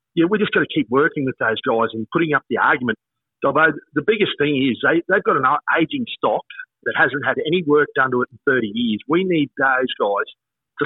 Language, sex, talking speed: English, male, 230 wpm